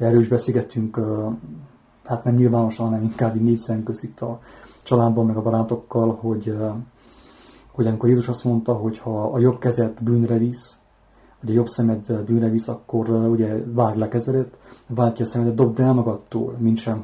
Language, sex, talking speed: English, male, 160 wpm